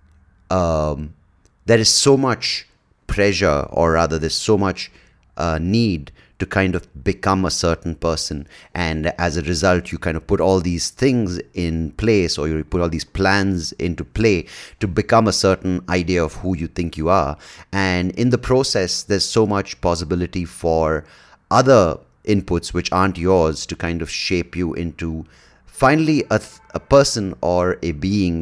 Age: 30-49